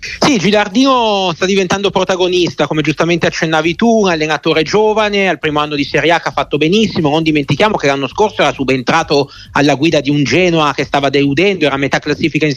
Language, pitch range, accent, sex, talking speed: Italian, 135-165 Hz, native, male, 195 wpm